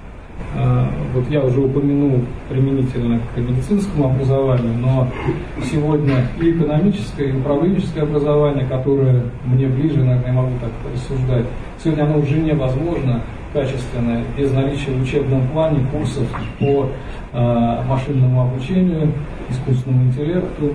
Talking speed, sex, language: 115 wpm, male, Russian